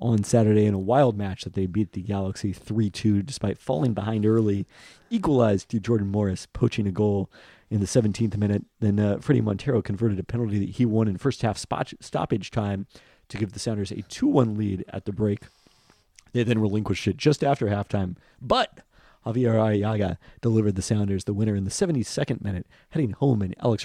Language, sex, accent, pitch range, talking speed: English, male, American, 95-115 Hz, 190 wpm